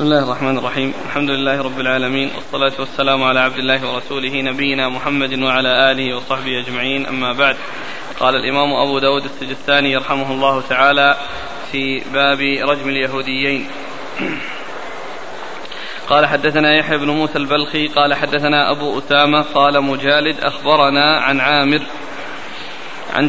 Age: 20-39